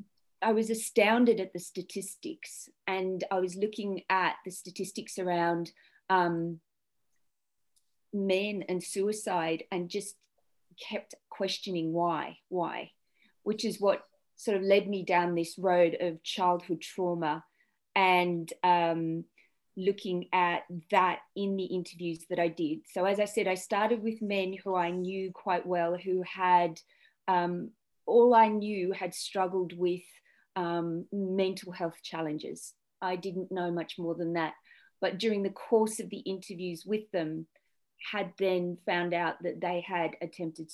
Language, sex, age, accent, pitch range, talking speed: English, female, 30-49, Australian, 175-195 Hz, 145 wpm